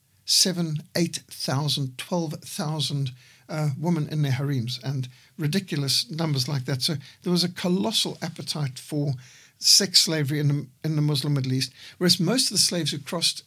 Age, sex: 60-79, male